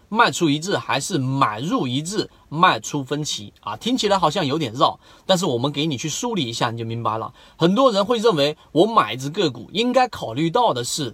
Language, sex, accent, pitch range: Chinese, male, native, 135-215 Hz